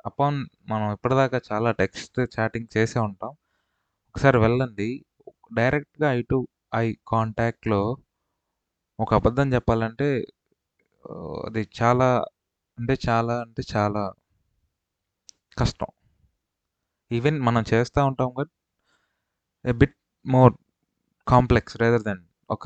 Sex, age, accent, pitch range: male, 20-39, native, 100-120 Hz